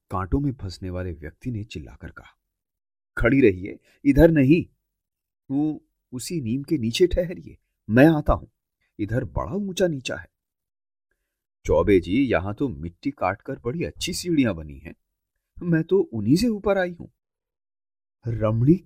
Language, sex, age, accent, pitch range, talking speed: Hindi, male, 30-49, native, 90-135 Hz, 135 wpm